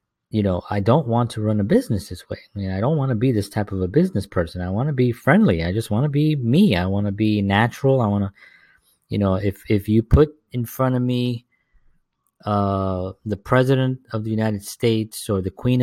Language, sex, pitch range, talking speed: English, male, 95-115 Hz, 240 wpm